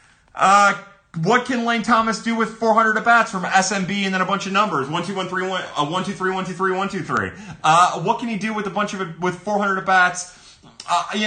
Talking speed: 255 wpm